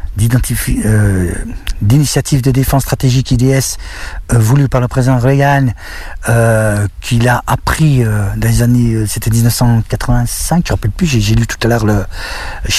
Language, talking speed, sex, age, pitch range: French, 165 wpm, male, 50-69, 105-130 Hz